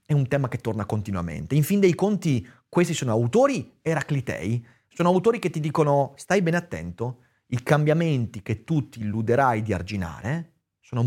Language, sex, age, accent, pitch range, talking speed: Italian, male, 30-49, native, 110-155 Hz, 170 wpm